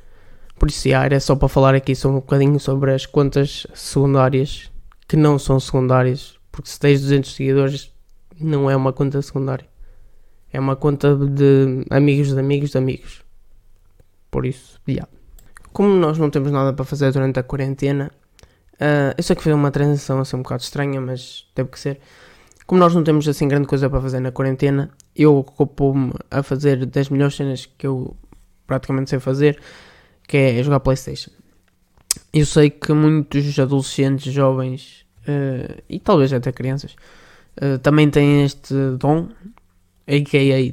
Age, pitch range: 20-39, 130-145 Hz